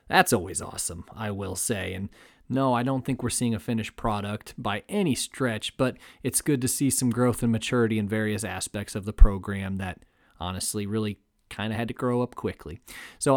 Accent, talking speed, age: American, 200 wpm, 40-59